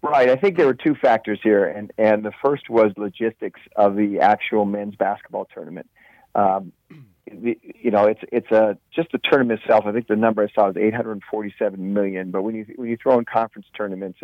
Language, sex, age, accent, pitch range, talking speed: English, male, 40-59, American, 105-120 Hz, 215 wpm